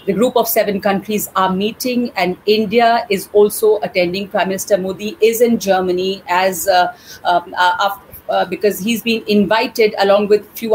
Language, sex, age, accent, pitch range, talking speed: English, female, 40-59, Indian, 190-240 Hz, 175 wpm